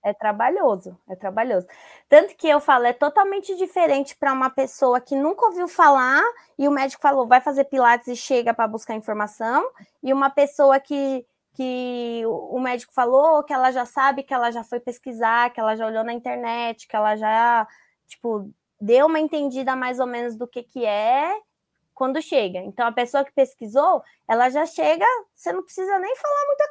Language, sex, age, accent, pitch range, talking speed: Portuguese, female, 20-39, Brazilian, 235-295 Hz, 185 wpm